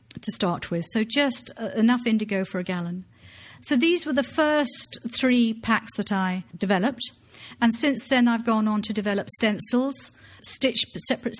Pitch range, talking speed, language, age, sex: 200-235 Hz, 160 wpm, English, 50-69, female